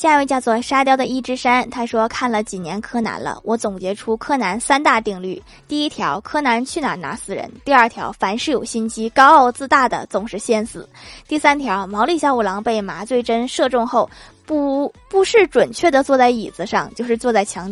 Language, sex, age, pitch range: Chinese, female, 20-39, 220-270 Hz